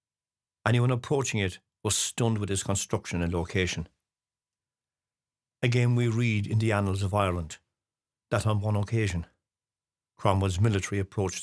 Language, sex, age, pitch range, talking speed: English, male, 50-69, 95-120 Hz, 130 wpm